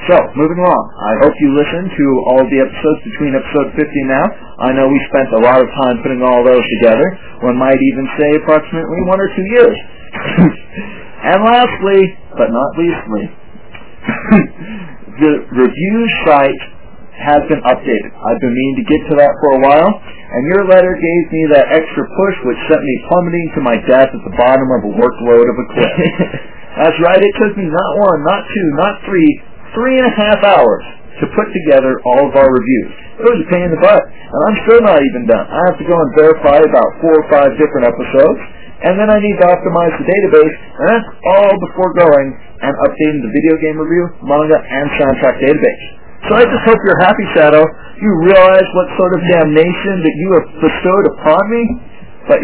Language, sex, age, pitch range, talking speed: English, male, 40-59, 135-190 Hz, 200 wpm